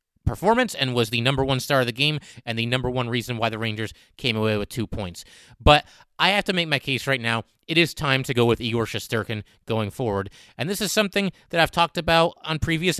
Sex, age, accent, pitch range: male, 30-49, American, 120-160 Hz